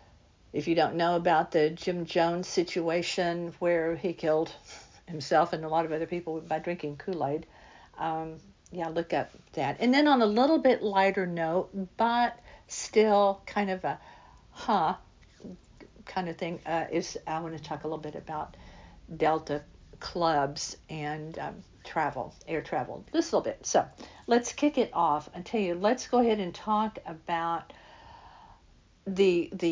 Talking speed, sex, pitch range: 160 wpm, female, 160-210 Hz